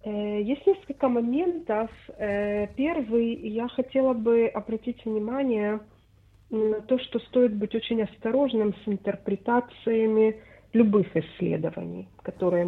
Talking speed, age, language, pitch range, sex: 100 wpm, 40-59, English, 185-225 Hz, female